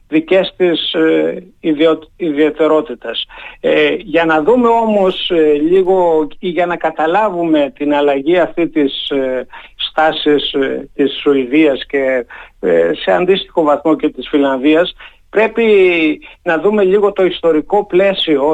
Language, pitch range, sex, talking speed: Greek, 145-185 Hz, male, 105 wpm